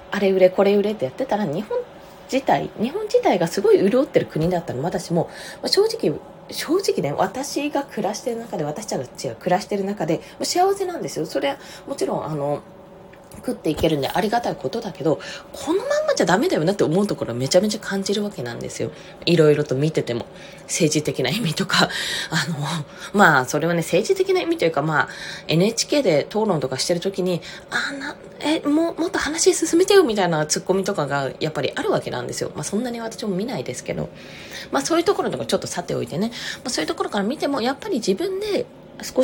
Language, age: Japanese, 20-39